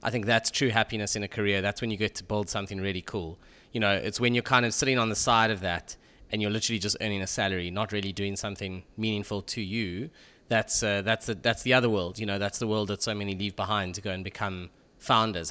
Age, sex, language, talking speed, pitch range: 20-39, male, English, 255 wpm, 100-120 Hz